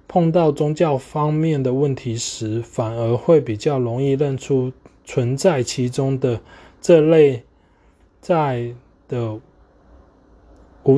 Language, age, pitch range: Chinese, 20-39, 115-150 Hz